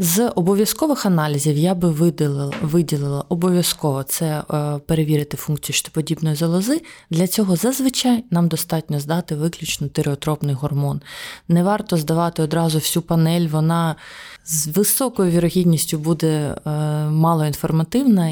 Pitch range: 150-180 Hz